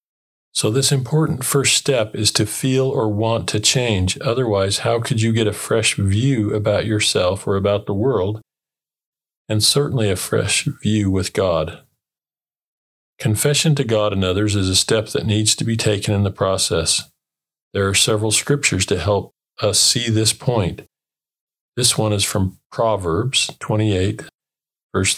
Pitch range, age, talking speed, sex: 100-120 Hz, 40-59, 155 wpm, male